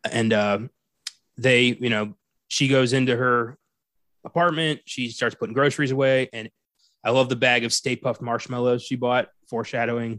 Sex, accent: male, American